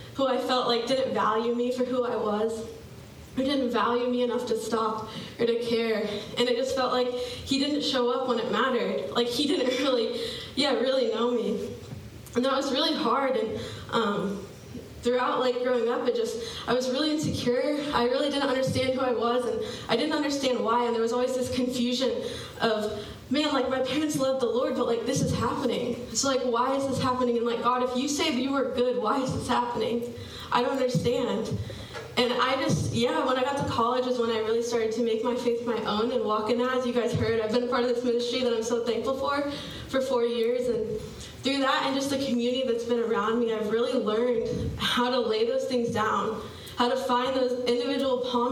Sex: female